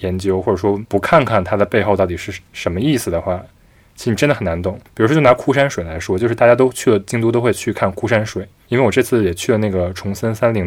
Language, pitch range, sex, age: Chinese, 95-120 Hz, male, 20-39